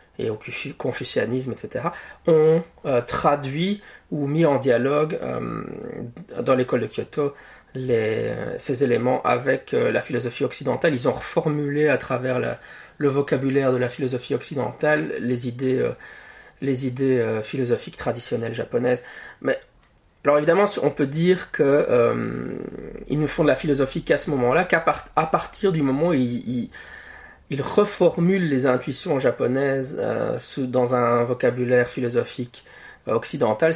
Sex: male